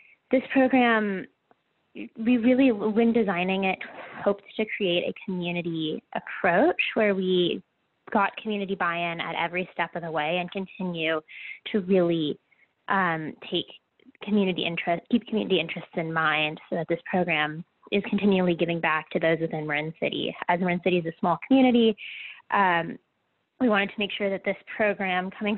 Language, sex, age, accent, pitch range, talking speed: English, female, 20-39, American, 175-215 Hz, 160 wpm